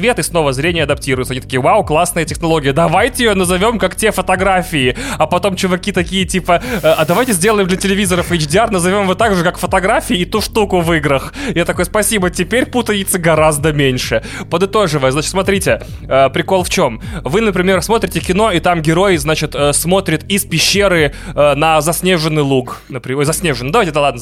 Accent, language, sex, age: native, Russian, male, 20-39